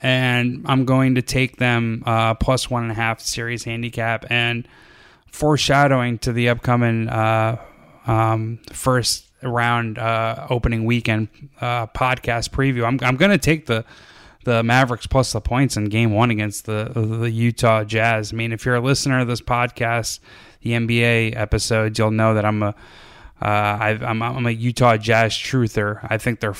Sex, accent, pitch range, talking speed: male, American, 105-120 Hz, 170 wpm